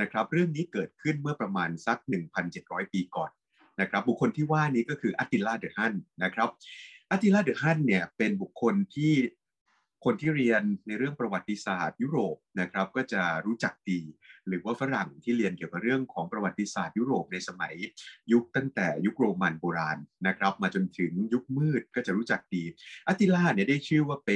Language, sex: Thai, male